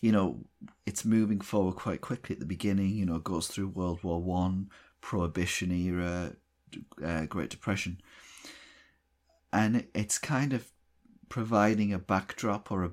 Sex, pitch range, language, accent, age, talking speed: male, 85-100 Hz, English, British, 30-49, 150 wpm